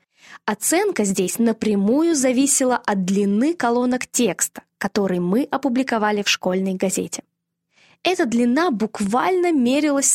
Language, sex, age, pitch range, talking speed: Russian, female, 20-39, 195-275 Hz, 105 wpm